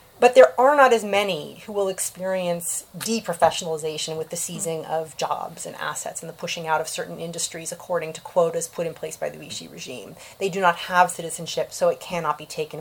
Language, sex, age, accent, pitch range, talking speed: English, female, 30-49, American, 165-190 Hz, 205 wpm